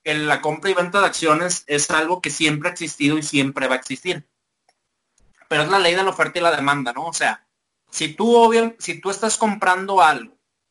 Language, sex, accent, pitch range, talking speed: Spanish, male, Mexican, 140-185 Hz, 215 wpm